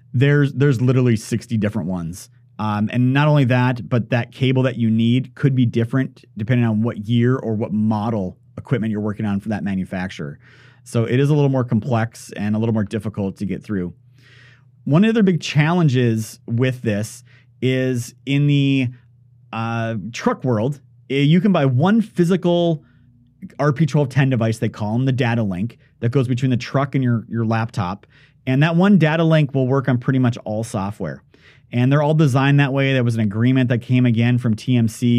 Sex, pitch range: male, 115-145 Hz